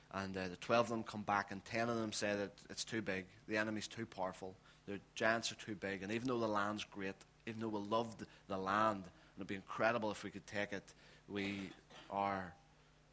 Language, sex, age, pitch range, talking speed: English, male, 30-49, 95-110 Hz, 230 wpm